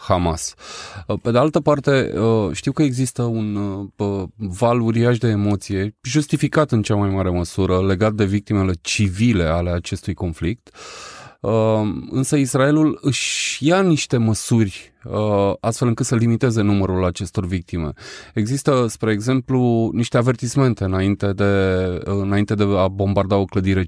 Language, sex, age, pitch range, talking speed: Romanian, male, 20-39, 100-135 Hz, 130 wpm